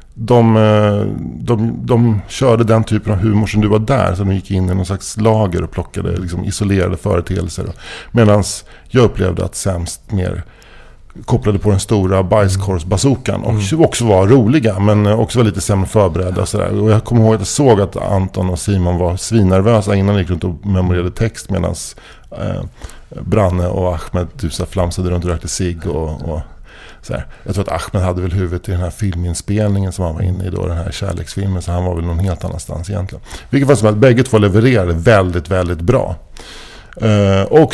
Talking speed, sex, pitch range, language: 190 wpm, male, 90-110 Hz, English